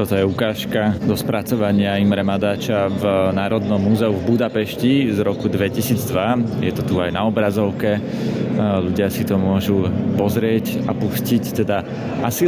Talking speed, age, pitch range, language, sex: 145 wpm, 20-39, 105-120 Hz, Slovak, male